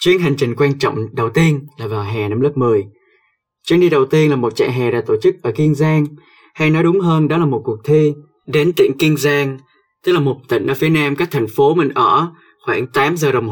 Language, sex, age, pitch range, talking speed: Vietnamese, male, 20-39, 125-185 Hz, 250 wpm